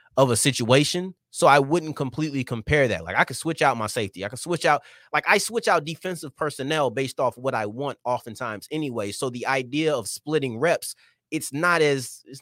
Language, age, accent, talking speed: English, 30-49, American, 210 wpm